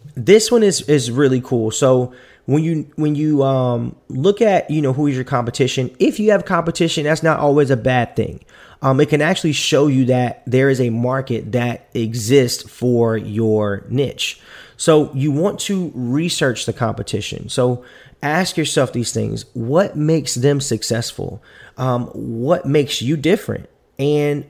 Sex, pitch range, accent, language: male, 115-140 Hz, American, English